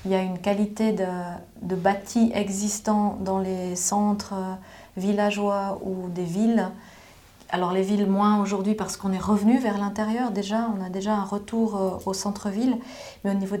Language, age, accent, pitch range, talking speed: French, 30-49, French, 190-210 Hz, 170 wpm